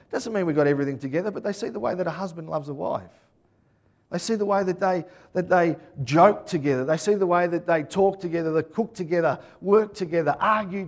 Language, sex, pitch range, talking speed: English, male, 155-205 Hz, 220 wpm